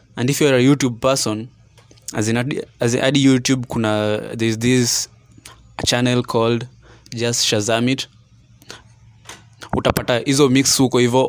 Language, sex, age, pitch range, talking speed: Swahili, male, 20-39, 110-125 Hz, 135 wpm